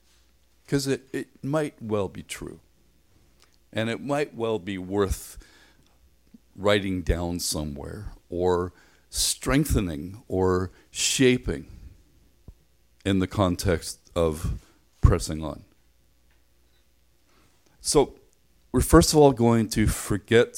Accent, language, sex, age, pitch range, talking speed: American, English, male, 50-69, 85-120 Hz, 95 wpm